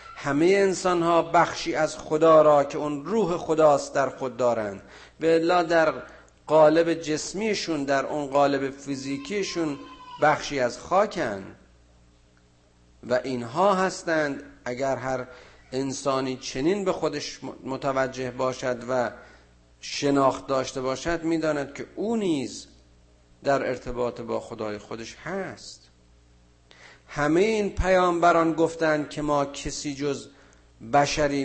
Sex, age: male, 50-69